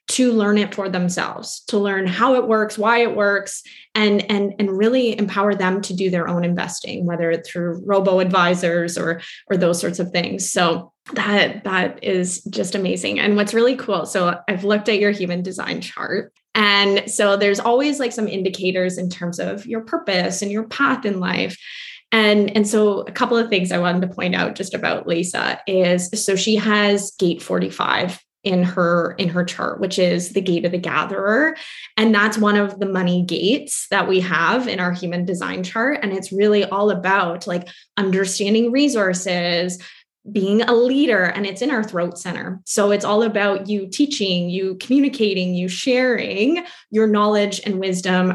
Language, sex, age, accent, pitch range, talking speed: English, female, 20-39, American, 180-220 Hz, 180 wpm